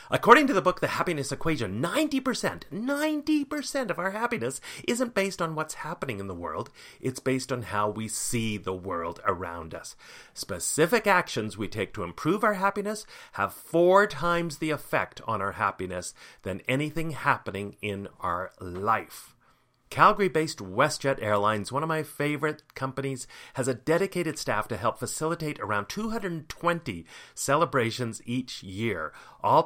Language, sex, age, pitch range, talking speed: English, male, 40-59, 110-175 Hz, 150 wpm